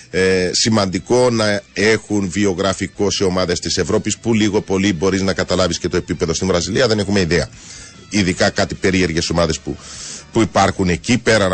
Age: 30-49